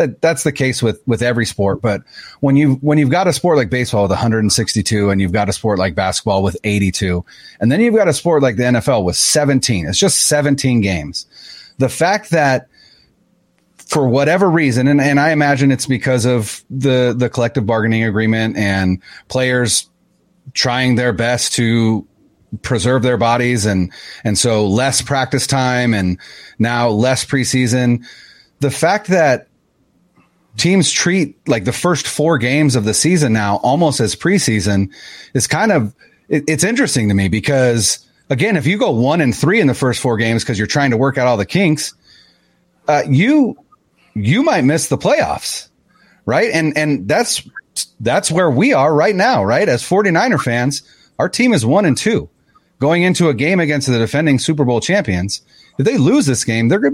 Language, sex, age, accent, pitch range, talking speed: English, male, 30-49, American, 110-145 Hz, 180 wpm